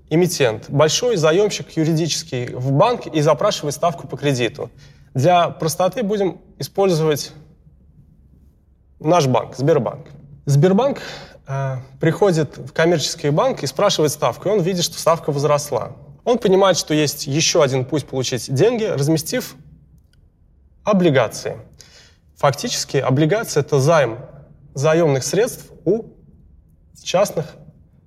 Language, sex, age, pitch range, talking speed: Russian, male, 20-39, 130-165 Hz, 105 wpm